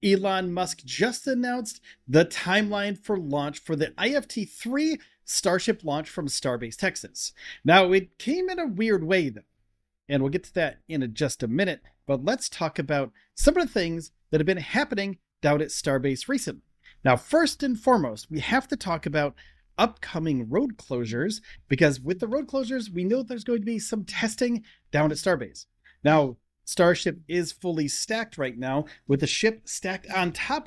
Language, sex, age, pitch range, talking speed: English, male, 30-49, 145-215 Hz, 180 wpm